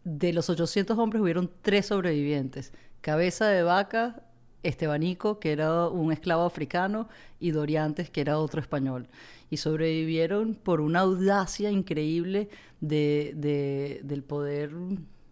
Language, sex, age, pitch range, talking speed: English, female, 30-49, 150-175 Hz, 125 wpm